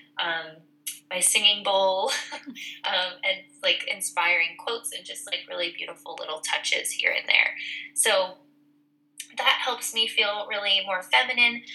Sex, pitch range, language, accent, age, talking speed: female, 170-270 Hz, English, American, 10-29, 140 wpm